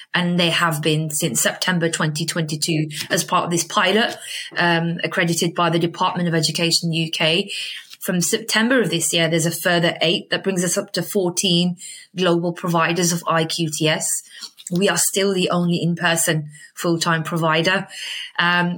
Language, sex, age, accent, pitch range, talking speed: English, female, 20-39, British, 170-200 Hz, 155 wpm